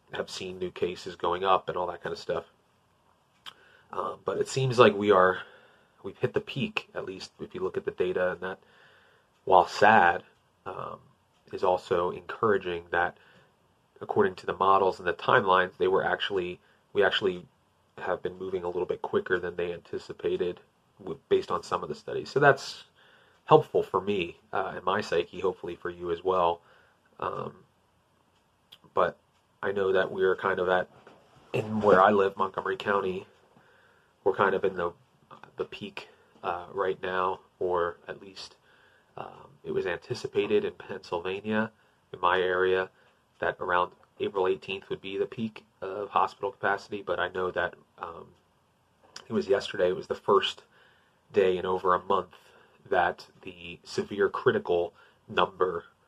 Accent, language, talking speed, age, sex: American, English, 165 wpm, 30-49, male